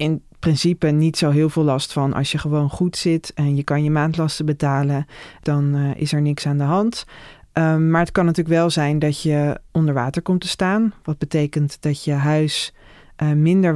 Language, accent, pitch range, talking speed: Dutch, Dutch, 150-175 Hz, 195 wpm